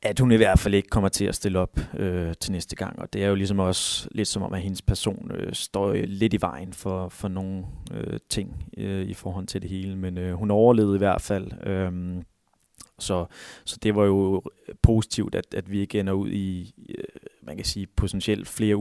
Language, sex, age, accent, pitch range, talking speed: Danish, male, 20-39, native, 95-105 Hz, 225 wpm